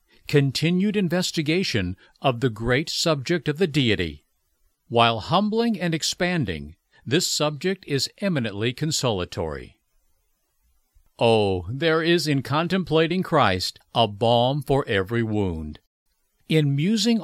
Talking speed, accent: 110 wpm, American